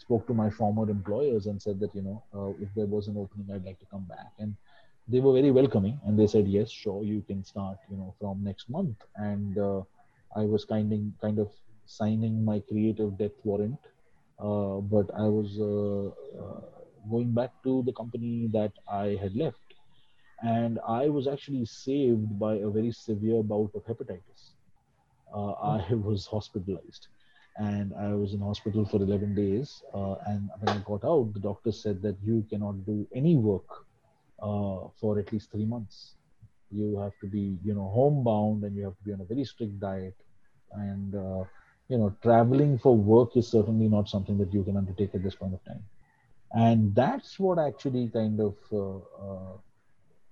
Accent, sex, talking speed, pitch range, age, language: Indian, male, 185 wpm, 100-110 Hz, 30-49, English